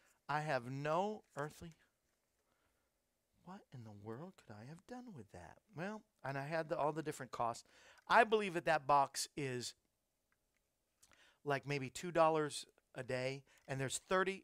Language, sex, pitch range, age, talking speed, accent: English, male, 130-195 Hz, 50-69, 155 wpm, American